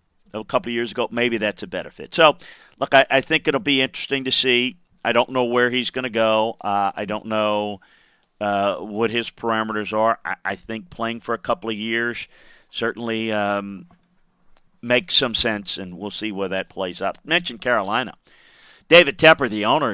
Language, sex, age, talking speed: English, male, 50-69, 195 wpm